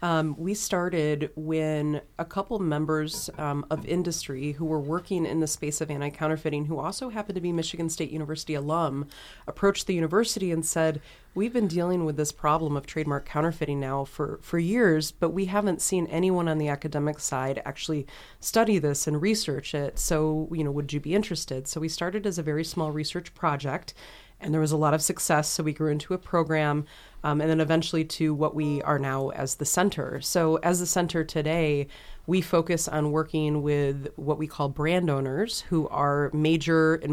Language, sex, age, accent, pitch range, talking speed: English, female, 30-49, American, 150-170 Hz, 195 wpm